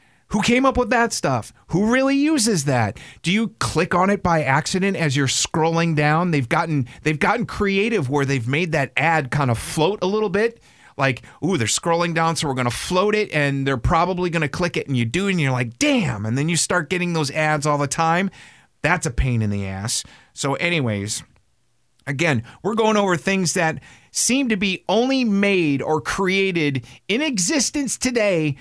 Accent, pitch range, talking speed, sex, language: American, 135-190 Hz, 200 wpm, male, English